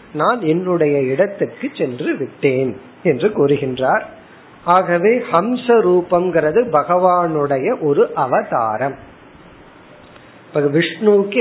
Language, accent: Tamil, native